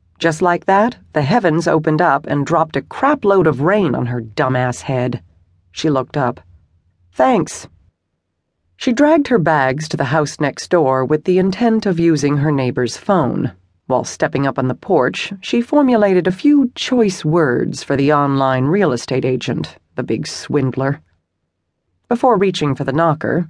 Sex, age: female, 40-59